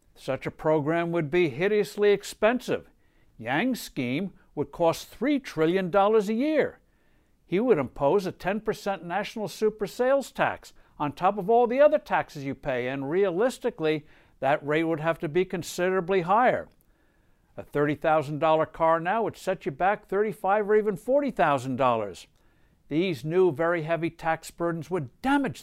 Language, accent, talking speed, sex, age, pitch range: English, American, 145 wpm, male, 60-79, 150-215 Hz